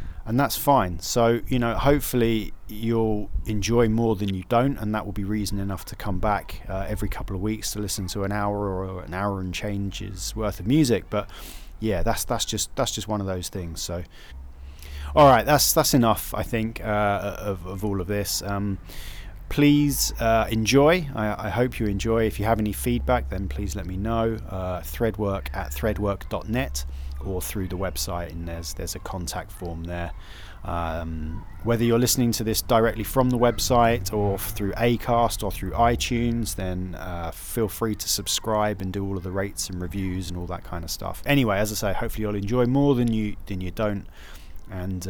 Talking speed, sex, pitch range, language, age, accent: 200 wpm, male, 90-110 Hz, English, 30-49, British